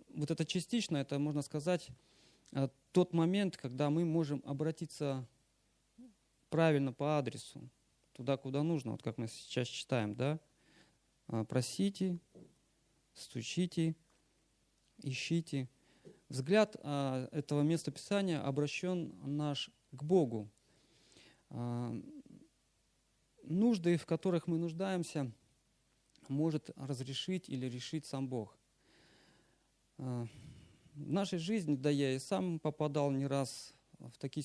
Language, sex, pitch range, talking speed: Russian, male, 130-165 Hz, 100 wpm